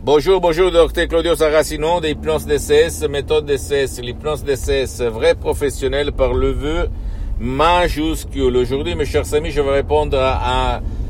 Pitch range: 95-145 Hz